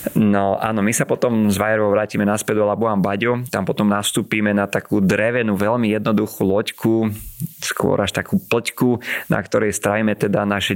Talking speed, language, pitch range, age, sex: 165 wpm, Slovak, 100-115 Hz, 30-49, male